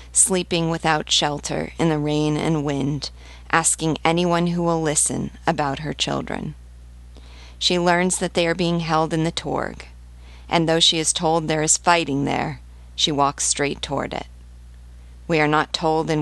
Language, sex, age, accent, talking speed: English, female, 40-59, American, 165 wpm